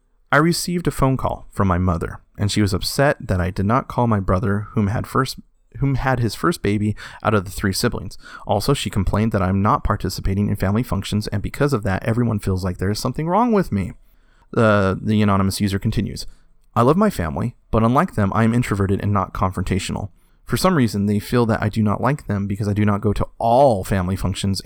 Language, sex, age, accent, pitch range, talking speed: English, male, 30-49, American, 95-120 Hz, 230 wpm